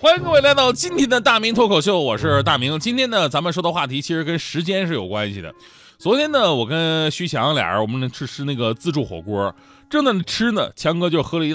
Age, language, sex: 30-49, Chinese, male